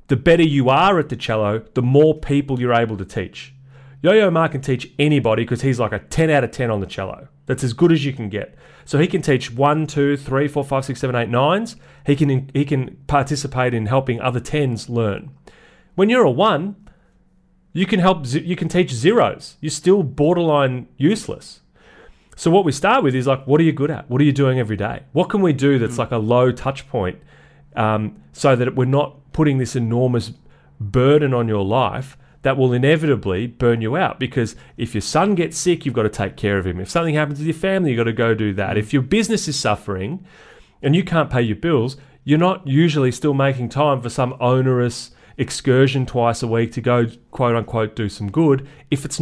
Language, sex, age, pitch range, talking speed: English, male, 30-49, 115-150 Hz, 215 wpm